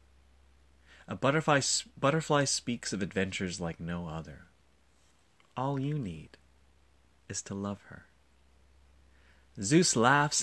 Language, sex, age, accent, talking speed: English, male, 30-49, American, 105 wpm